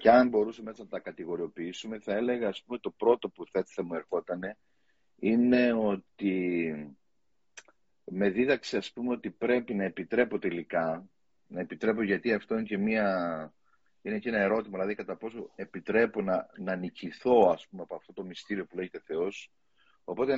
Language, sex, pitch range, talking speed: Greek, male, 90-125 Hz, 160 wpm